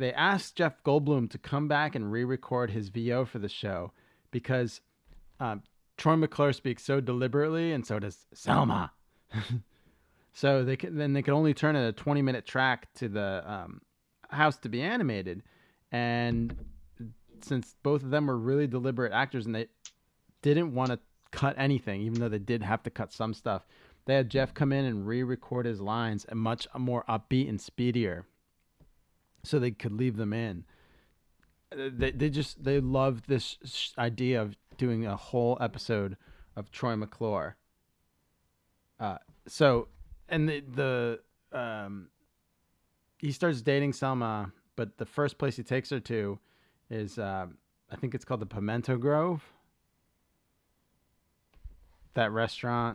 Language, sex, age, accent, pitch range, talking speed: English, male, 30-49, American, 105-135 Hz, 150 wpm